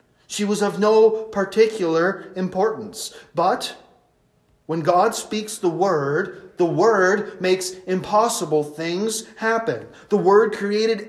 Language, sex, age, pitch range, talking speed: English, male, 30-49, 165-210 Hz, 115 wpm